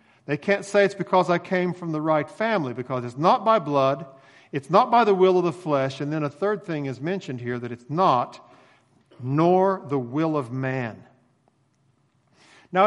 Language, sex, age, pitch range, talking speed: English, male, 50-69, 130-175 Hz, 190 wpm